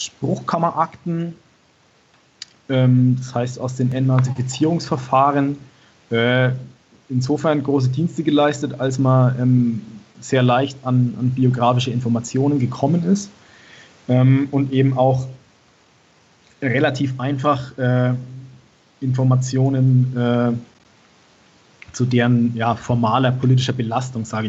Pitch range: 110-130 Hz